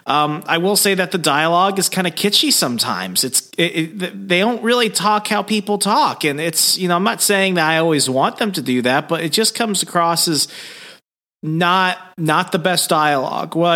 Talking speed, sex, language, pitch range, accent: 215 wpm, male, English, 130-170 Hz, American